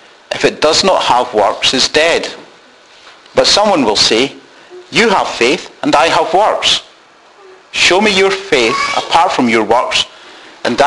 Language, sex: English, male